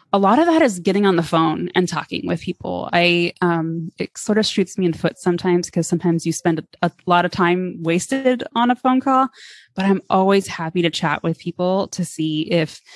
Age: 20-39